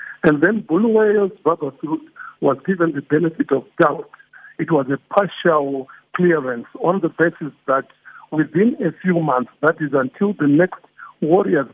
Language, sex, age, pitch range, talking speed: English, male, 60-79, 135-170 Hz, 155 wpm